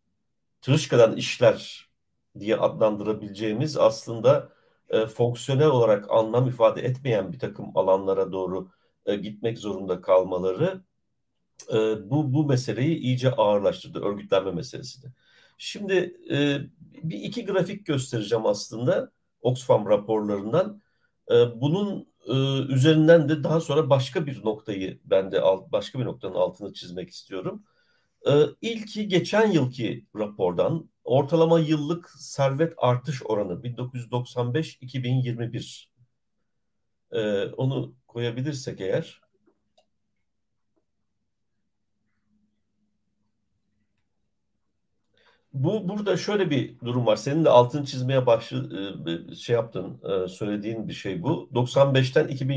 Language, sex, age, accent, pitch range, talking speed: Turkish, male, 50-69, native, 105-155 Hz, 100 wpm